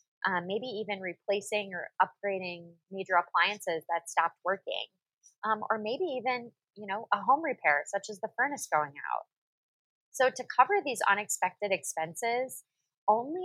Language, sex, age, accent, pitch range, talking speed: English, female, 20-39, American, 170-215 Hz, 145 wpm